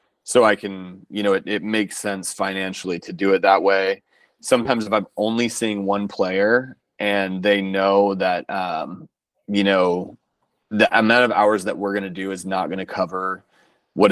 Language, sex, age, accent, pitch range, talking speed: English, male, 30-49, American, 95-105 Hz, 180 wpm